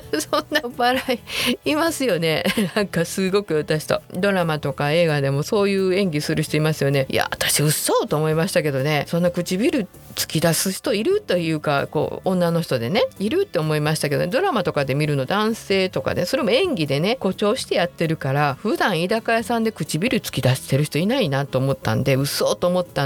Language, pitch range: Japanese, 155-230 Hz